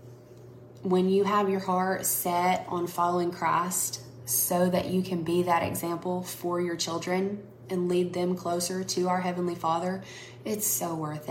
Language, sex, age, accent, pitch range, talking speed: English, female, 20-39, American, 125-190 Hz, 160 wpm